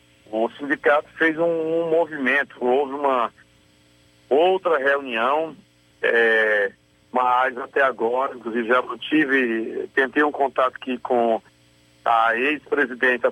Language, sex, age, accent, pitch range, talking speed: Portuguese, male, 40-59, Brazilian, 110-135 Hz, 110 wpm